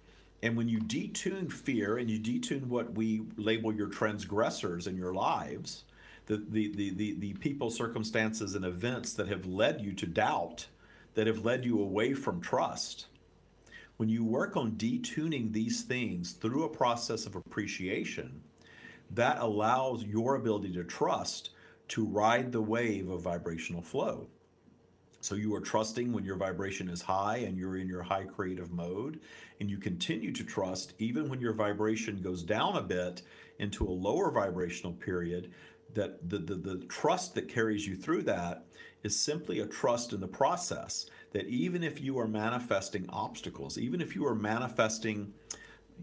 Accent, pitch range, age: American, 95-115 Hz, 50-69